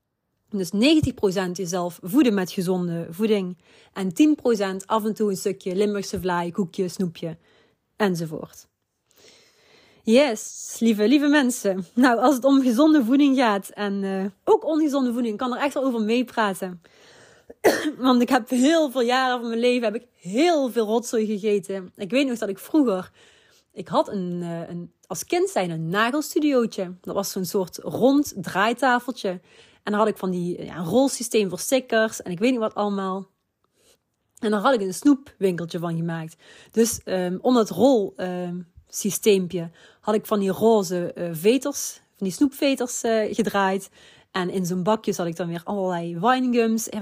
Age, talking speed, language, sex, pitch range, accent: 30-49, 160 wpm, Dutch, female, 190-250 Hz, Dutch